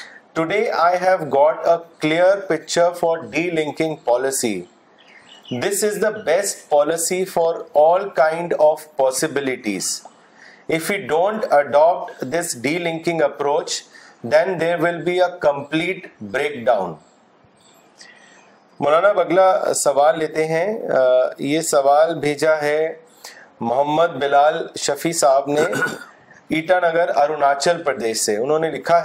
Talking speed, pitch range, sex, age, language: 115 wpm, 145-185 Hz, male, 40-59, Urdu